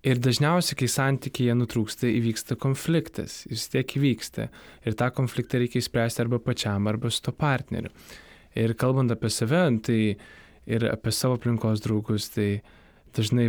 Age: 20-39